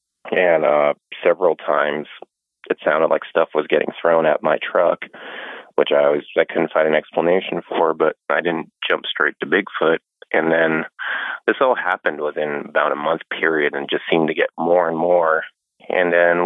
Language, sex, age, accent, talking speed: English, male, 30-49, American, 180 wpm